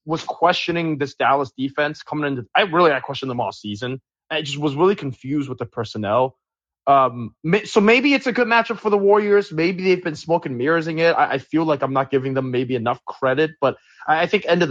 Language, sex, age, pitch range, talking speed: English, male, 20-39, 120-170 Hz, 225 wpm